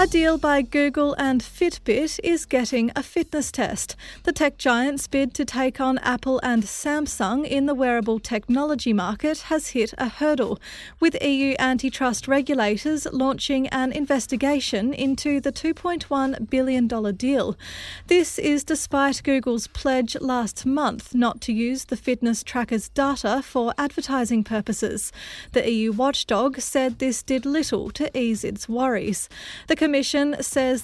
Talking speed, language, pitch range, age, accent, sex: 145 wpm, English, 235-280 Hz, 30-49, Australian, female